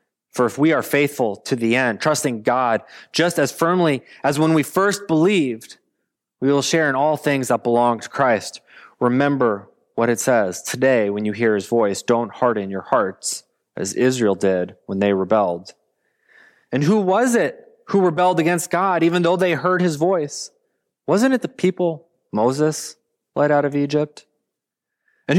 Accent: American